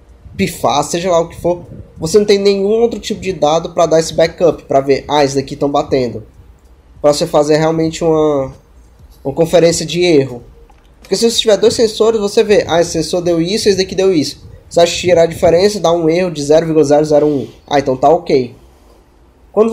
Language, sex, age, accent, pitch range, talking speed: Portuguese, male, 20-39, Brazilian, 140-210 Hz, 200 wpm